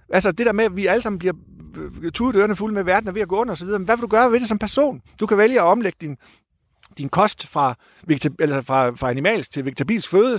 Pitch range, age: 150-210 Hz, 50-69